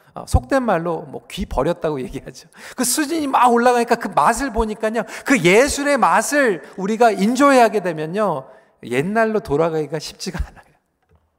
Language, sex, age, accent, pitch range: Korean, male, 40-59, native, 185-275 Hz